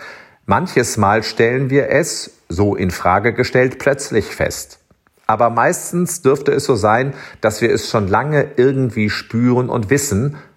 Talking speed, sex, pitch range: 150 wpm, male, 105-140 Hz